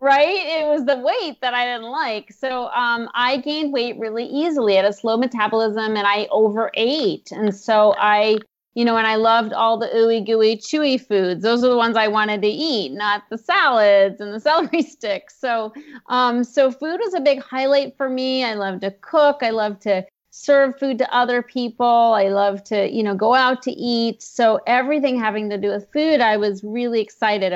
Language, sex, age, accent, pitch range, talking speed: English, female, 30-49, American, 210-255 Hz, 205 wpm